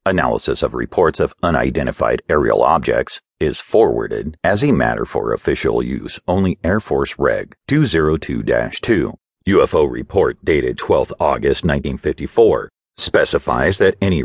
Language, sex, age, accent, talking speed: English, male, 50-69, American, 120 wpm